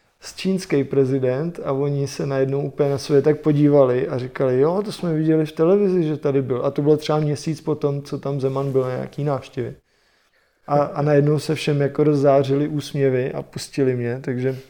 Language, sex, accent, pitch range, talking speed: Czech, male, native, 130-145 Hz, 190 wpm